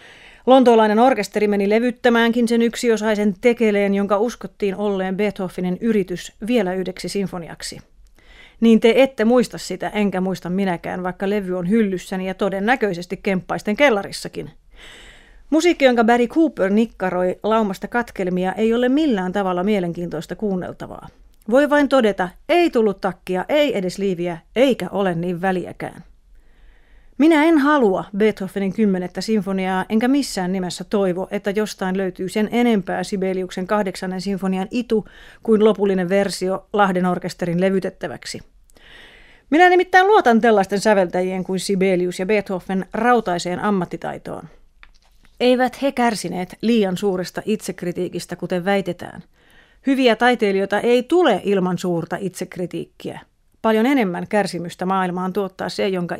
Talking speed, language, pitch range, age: 125 wpm, Finnish, 185-230 Hz, 30-49